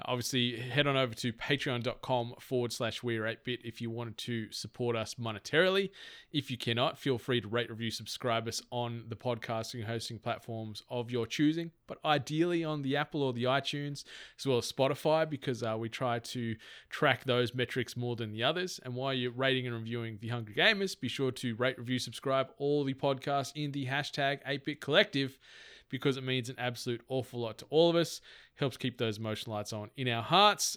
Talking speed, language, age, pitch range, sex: 200 wpm, English, 20-39, 120-145 Hz, male